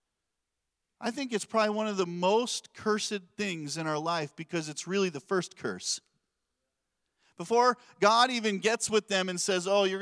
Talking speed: 175 wpm